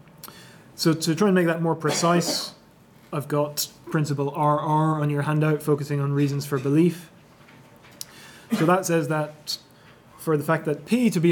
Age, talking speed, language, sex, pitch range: 20-39, 165 wpm, English, male, 140-160 Hz